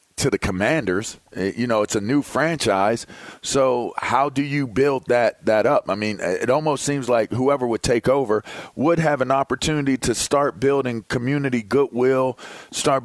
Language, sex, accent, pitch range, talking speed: English, male, American, 110-135 Hz, 170 wpm